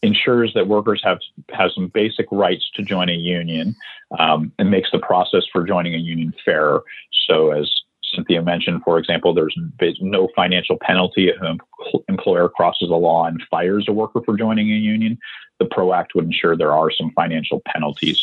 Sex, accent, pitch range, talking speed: male, American, 90-120 Hz, 185 wpm